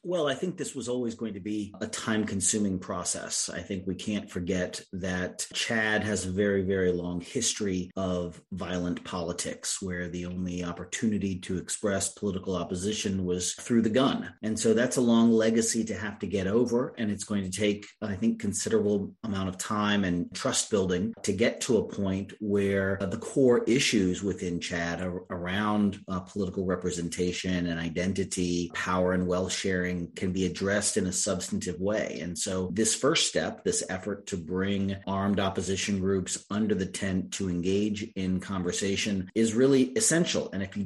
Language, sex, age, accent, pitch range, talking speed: English, male, 30-49, American, 95-110 Hz, 175 wpm